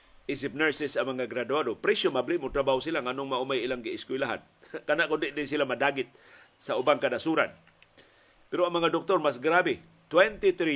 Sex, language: male, Filipino